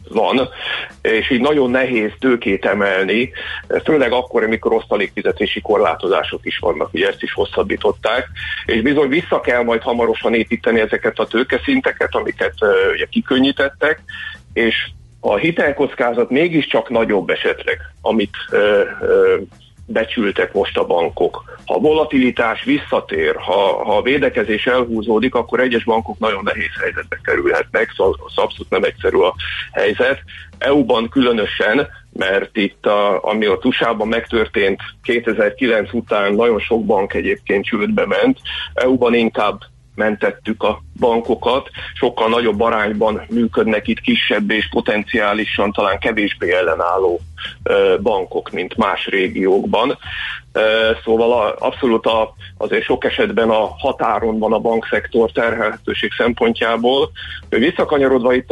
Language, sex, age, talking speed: Hungarian, male, 50-69, 120 wpm